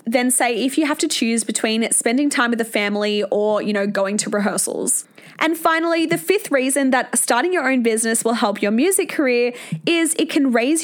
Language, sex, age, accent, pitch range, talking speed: English, female, 20-39, Australian, 225-290 Hz, 210 wpm